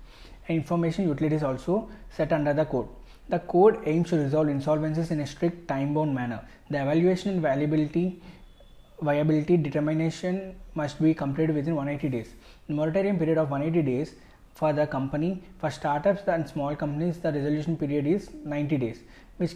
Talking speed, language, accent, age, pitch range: 160 wpm, English, Indian, 20-39, 145-170 Hz